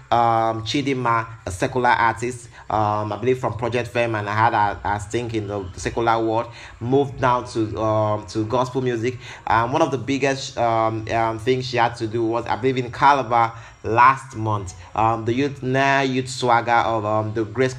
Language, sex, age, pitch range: English, male, 30-49, 110-130 Hz